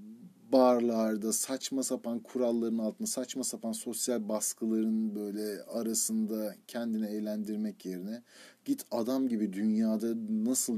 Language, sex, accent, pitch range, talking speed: Turkish, male, native, 105-160 Hz, 105 wpm